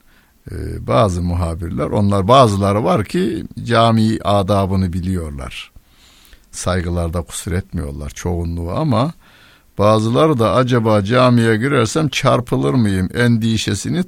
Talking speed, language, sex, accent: 95 wpm, Turkish, male, native